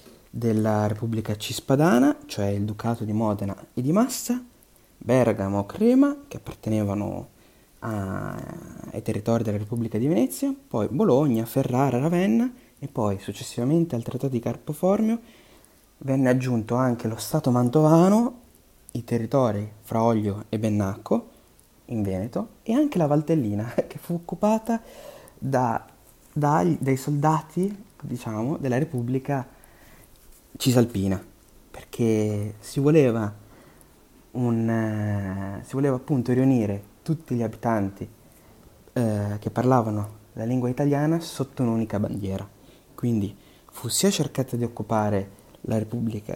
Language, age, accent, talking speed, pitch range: Italian, 20-39, native, 115 wpm, 105-145 Hz